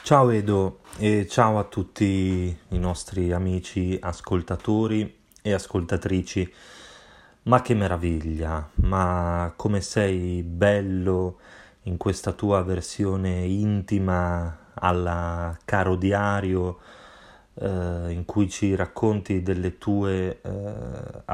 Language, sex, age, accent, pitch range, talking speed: Italian, male, 20-39, native, 90-100 Hz, 100 wpm